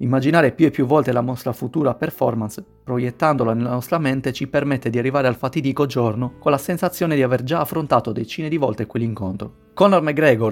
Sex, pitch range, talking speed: male, 120-150 Hz, 190 wpm